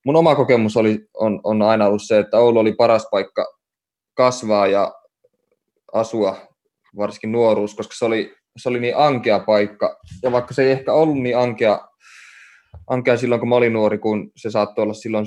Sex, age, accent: male, 20-39, native